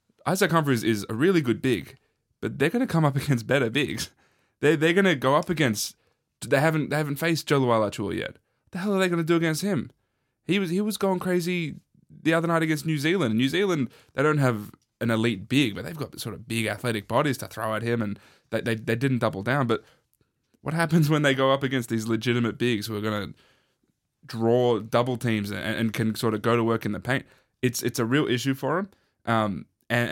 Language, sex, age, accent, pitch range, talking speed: English, male, 10-29, Australian, 115-145 Hz, 225 wpm